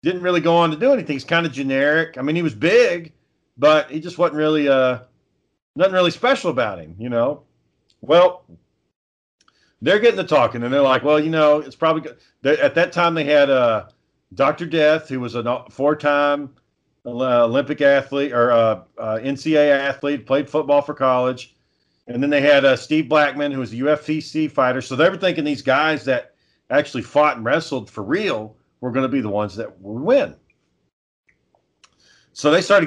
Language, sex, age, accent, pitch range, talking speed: English, male, 40-59, American, 125-155 Hz, 195 wpm